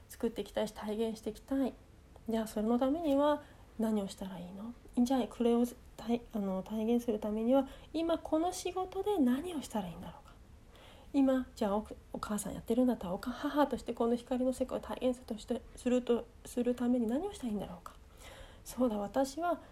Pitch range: 210-260 Hz